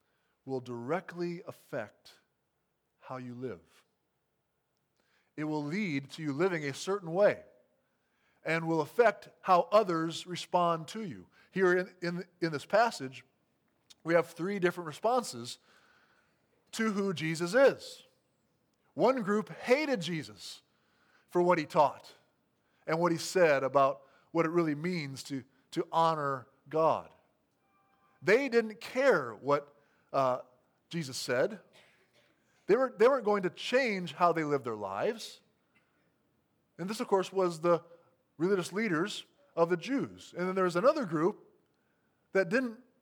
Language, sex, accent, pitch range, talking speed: English, male, American, 145-190 Hz, 130 wpm